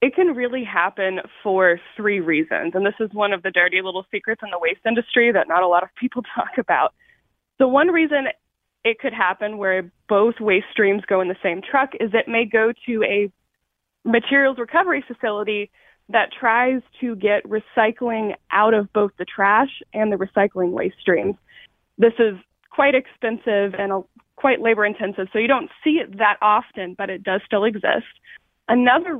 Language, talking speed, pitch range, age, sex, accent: English, 180 wpm, 200-250 Hz, 20-39, female, American